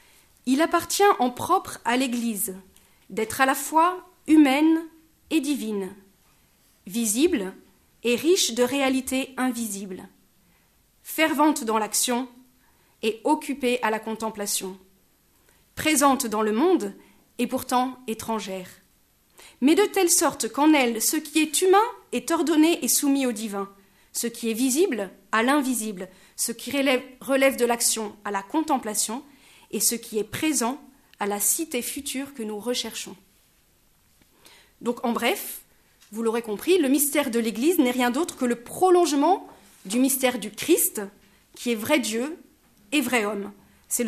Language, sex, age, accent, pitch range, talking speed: French, female, 40-59, French, 225-300 Hz, 140 wpm